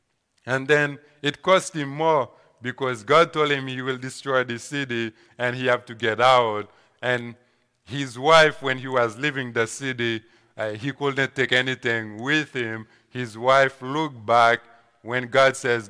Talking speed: 165 wpm